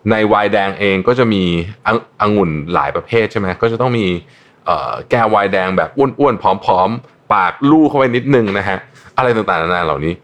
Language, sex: Thai, male